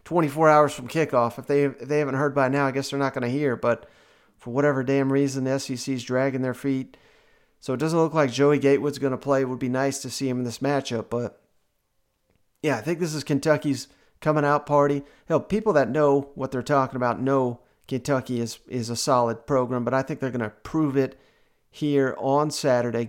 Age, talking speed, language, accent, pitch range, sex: 40-59, 225 wpm, English, American, 130-145 Hz, male